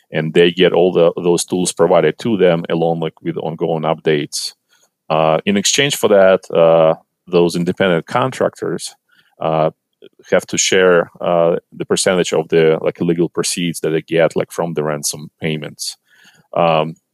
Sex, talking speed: male, 160 wpm